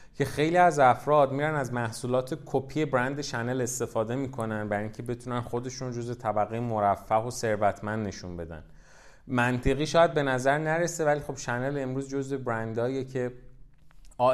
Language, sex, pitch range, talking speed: Persian, male, 105-135 Hz, 150 wpm